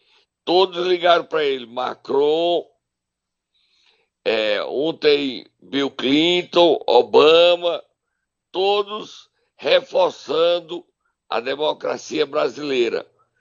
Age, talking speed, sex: 60-79, 65 wpm, male